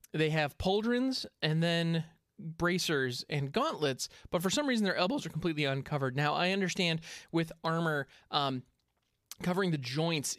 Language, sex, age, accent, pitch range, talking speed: English, male, 20-39, American, 145-190 Hz, 150 wpm